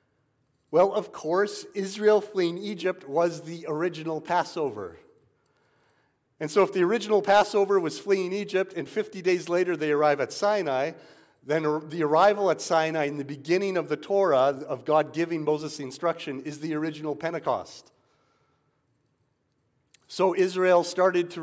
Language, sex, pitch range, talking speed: English, male, 145-185 Hz, 145 wpm